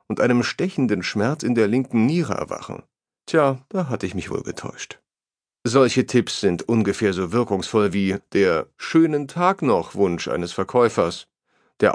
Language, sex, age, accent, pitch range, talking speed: German, male, 40-59, German, 100-135 Hz, 155 wpm